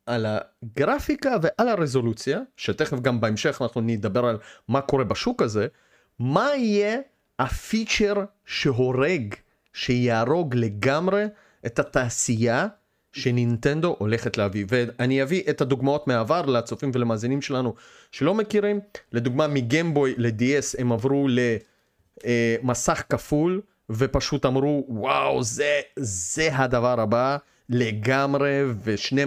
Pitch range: 115-160 Hz